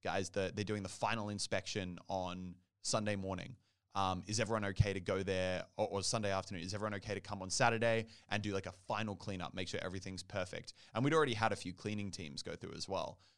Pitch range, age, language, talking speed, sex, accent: 95-115 Hz, 20-39, English, 220 wpm, male, Australian